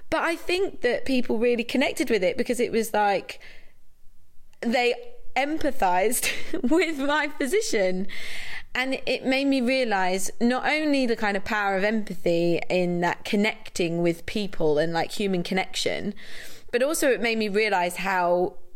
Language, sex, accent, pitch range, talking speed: English, female, British, 175-230 Hz, 150 wpm